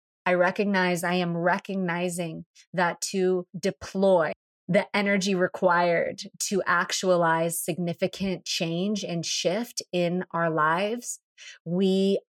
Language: English